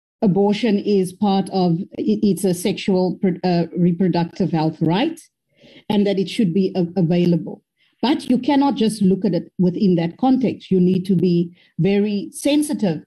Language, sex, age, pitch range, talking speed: English, female, 50-69, 180-220 Hz, 150 wpm